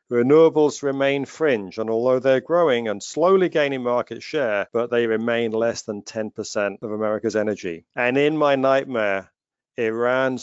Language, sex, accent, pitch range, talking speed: English, male, British, 105-125 Hz, 150 wpm